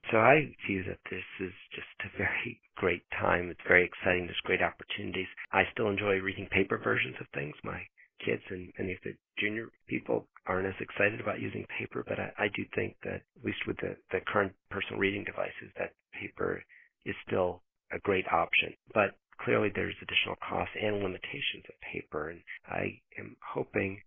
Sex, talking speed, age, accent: male, 185 wpm, 40-59, American